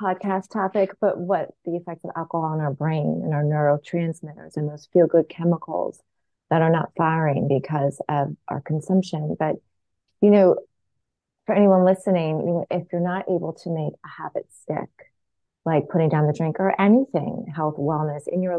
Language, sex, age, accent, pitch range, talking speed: English, female, 30-49, American, 160-185 Hz, 170 wpm